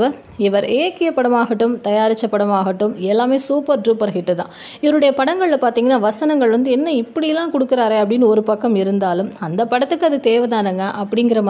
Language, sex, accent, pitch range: Tamil, female, native, 205-265 Hz